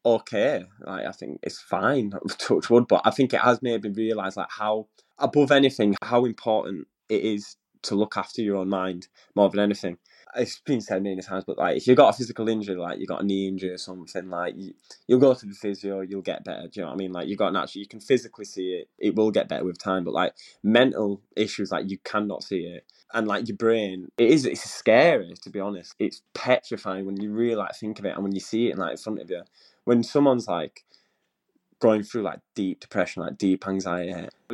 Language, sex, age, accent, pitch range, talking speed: English, male, 10-29, British, 95-110 Hz, 235 wpm